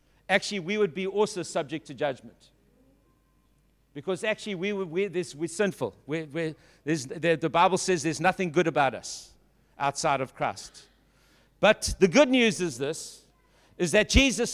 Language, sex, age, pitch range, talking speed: English, male, 60-79, 165-215 Hz, 160 wpm